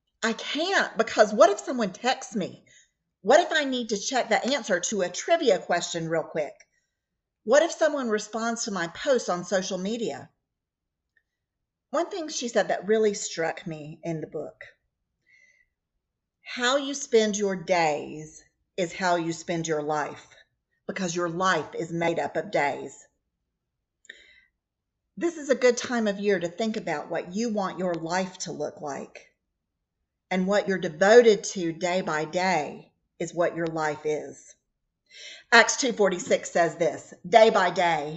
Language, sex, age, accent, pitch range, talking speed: English, female, 50-69, American, 165-220 Hz, 155 wpm